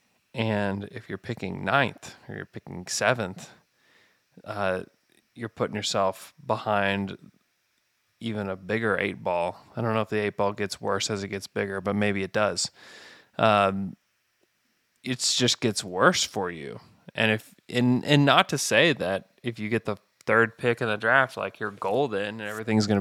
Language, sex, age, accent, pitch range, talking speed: English, male, 20-39, American, 105-125 Hz, 170 wpm